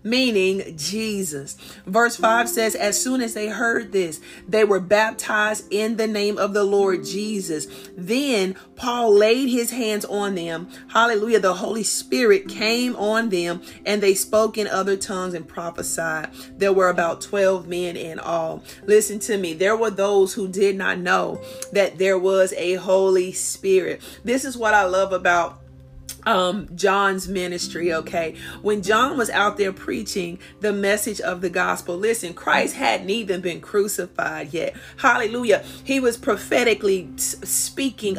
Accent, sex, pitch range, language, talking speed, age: American, female, 190-225 Hz, English, 155 wpm, 40-59